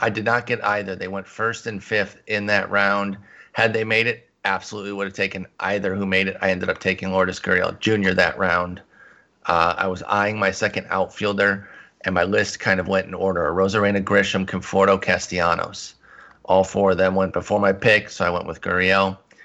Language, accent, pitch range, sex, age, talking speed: English, American, 95-120 Hz, male, 30-49, 205 wpm